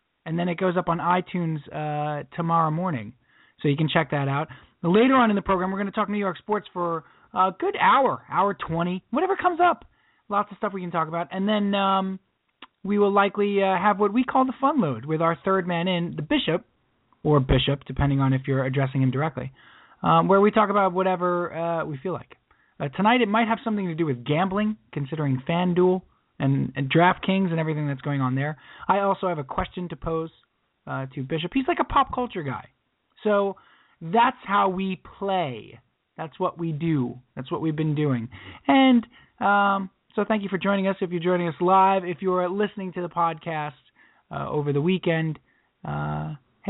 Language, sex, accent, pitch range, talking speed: English, male, American, 150-195 Hz, 205 wpm